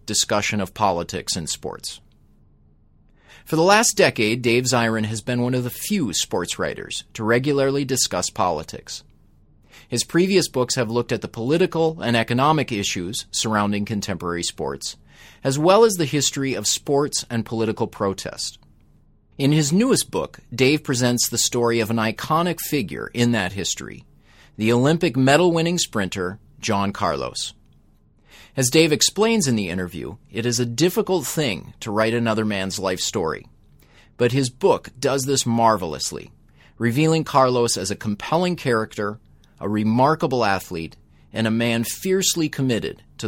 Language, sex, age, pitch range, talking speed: English, male, 30-49, 105-140 Hz, 145 wpm